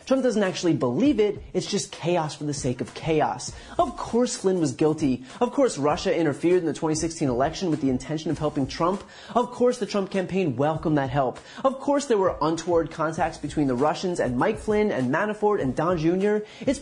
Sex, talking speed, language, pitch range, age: male, 205 wpm, English, 155-200 Hz, 30-49